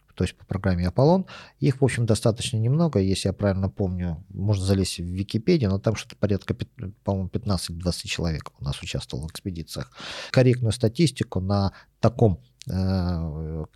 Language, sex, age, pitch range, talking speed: Russian, male, 50-69, 95-115 Hz, 150 wpm